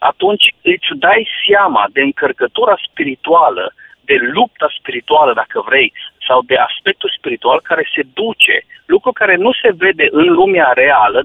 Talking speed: 145 wpm